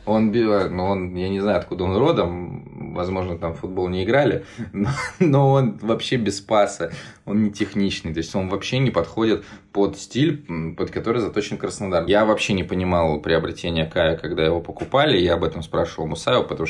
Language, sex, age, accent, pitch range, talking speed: Russian, male, 20-39, native, 80-100 Hz, 185 wpm